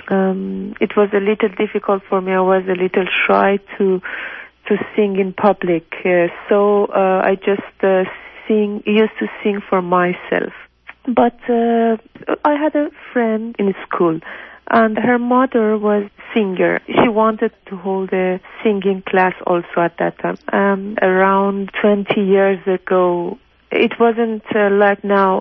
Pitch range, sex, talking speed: 185-220 Hz, female, 150 wpm